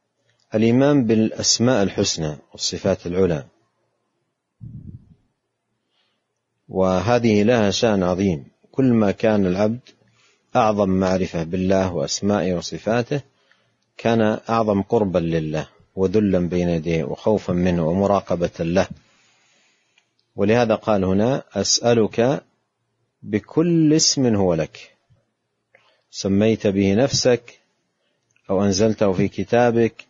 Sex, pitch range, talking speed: male, 95-120 Hz, 90 wpm